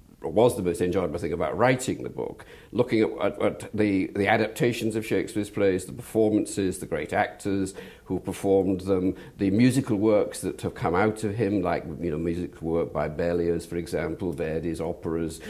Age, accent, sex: 50-69, British, male